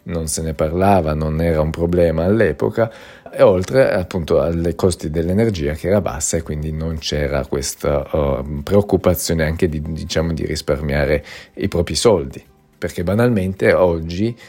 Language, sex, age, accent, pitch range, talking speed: Italian, male, 40-59, native, 75-90 Hz, 150 wpm